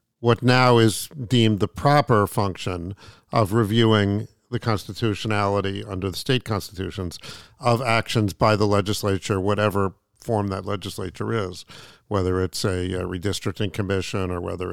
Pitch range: 105-130 Hz